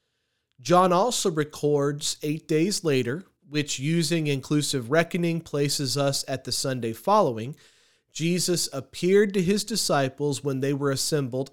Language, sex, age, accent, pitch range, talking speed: English, male, 40-59, American, 130-170 Hz, 130 wpm